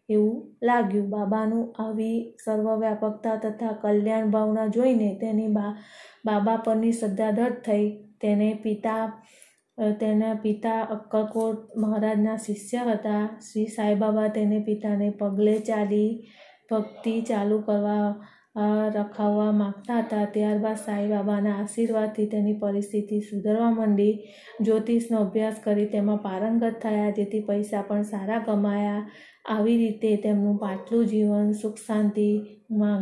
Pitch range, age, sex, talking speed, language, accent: 210-220 Hz, 20-39, female, 105 wpm, Gujarati, native